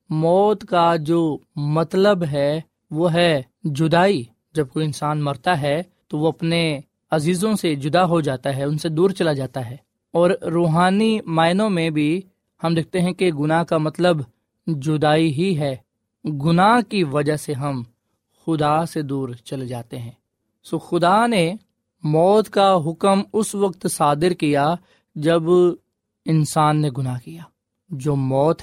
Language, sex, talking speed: Urdu, male, 150 wpm